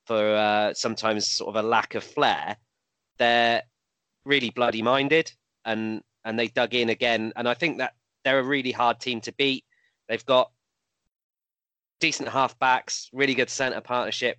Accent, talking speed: British, 155 wpm